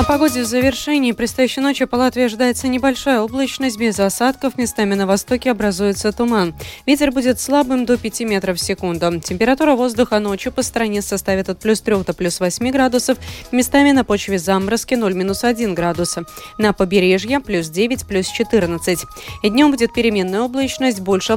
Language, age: Russian, 20-39